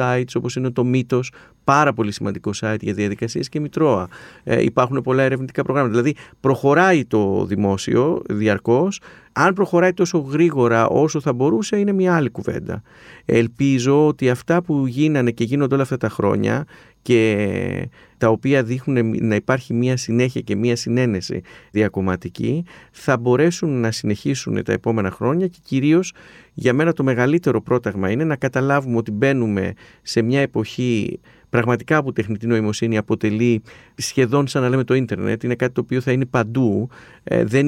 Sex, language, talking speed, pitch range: male, Greek, 155 wpm, 115-145 Hz